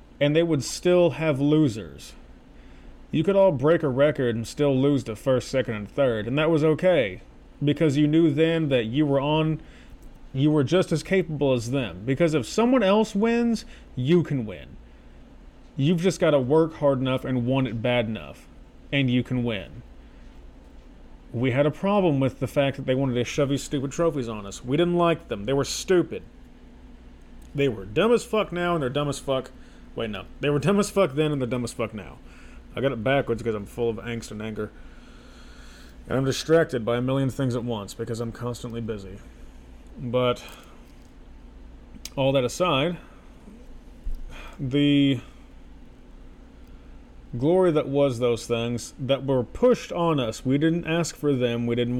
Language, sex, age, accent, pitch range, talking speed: English, male, 30-49, American, 120-155 Hz, 180 wpm